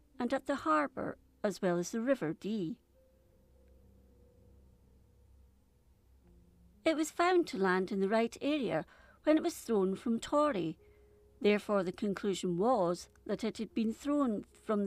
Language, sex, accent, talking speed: English, female, British, 140 wpm